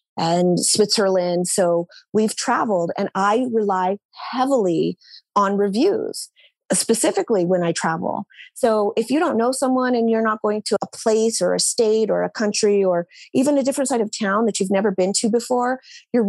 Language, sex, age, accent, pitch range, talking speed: English, female, 30-49, American, 195-245 Hz, 175 wpm